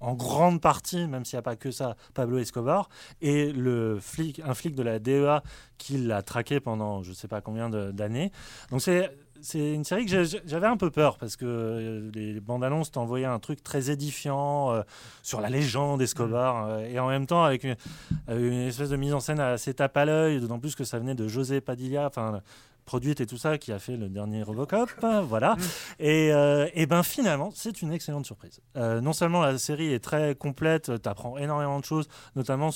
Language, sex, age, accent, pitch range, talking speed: French, male, 30-49, French, 120-155 Hz, 210 wpm